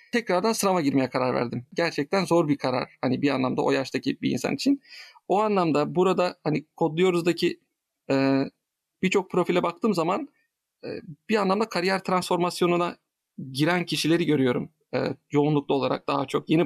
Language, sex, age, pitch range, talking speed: Turkish, male, 40-59, 145-195 Hz, 150 wpm